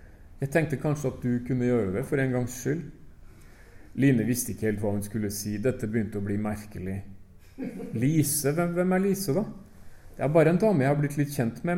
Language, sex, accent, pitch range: Danish, male, Norwegian, 105-155 Hz